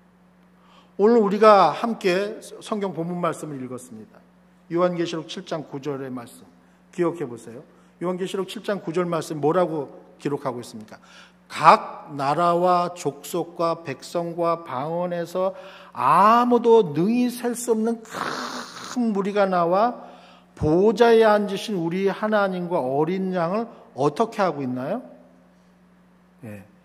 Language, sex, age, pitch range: Korean, male, 50-69, 170-220 Hz